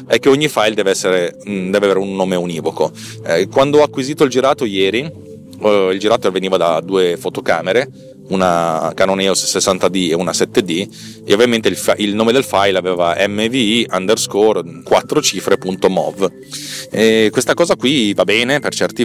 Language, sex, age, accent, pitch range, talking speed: Italian, male, 30-49, native, 95-120 Hz, 165 wpm